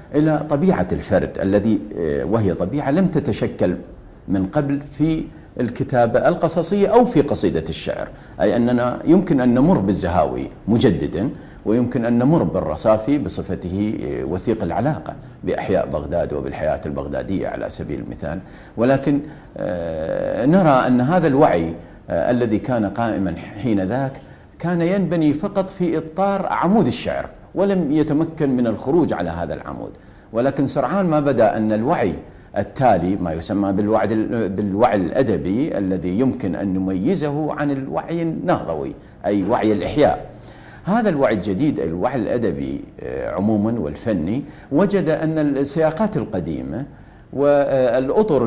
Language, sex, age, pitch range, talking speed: Arabic, male, 50-69, 105-160 Hz, 120 wpm